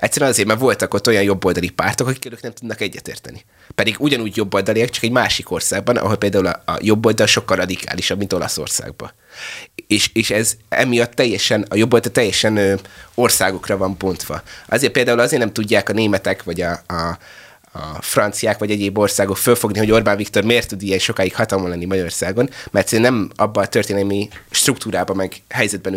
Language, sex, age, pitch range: Hungarian, male, 20-39, 95-115 Hz